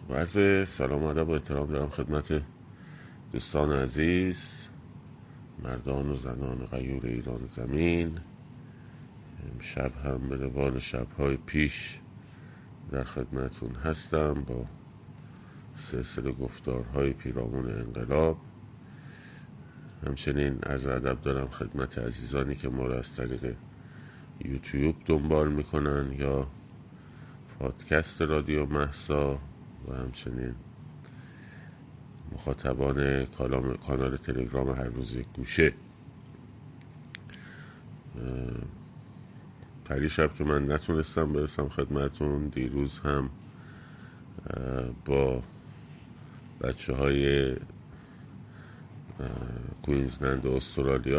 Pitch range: 65-75 Hz